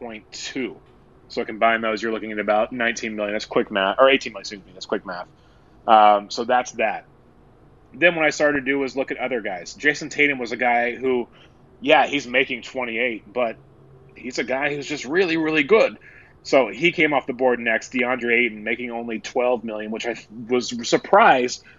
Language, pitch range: English, 115-135 Hz